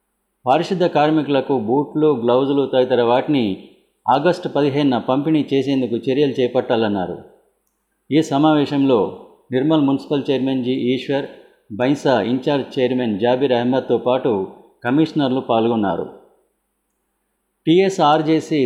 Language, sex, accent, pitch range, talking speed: Telugu, male, native, 125-150 Hz, 90 wpm